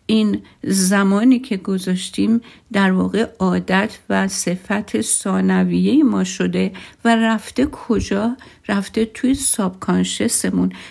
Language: Persian